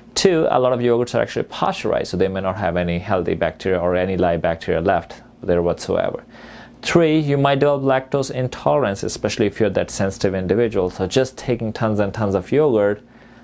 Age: 30-49